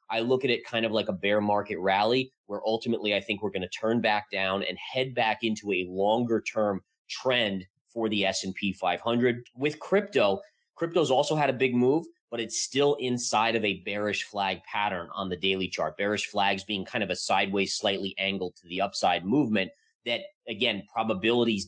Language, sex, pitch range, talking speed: English, male, 100-130 Hz, 195 wpm